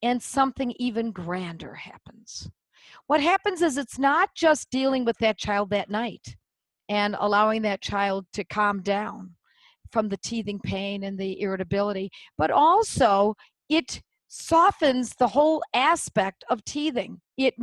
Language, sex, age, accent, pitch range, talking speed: English, female, 50-69, American, 210-295 Hz, 140 wpm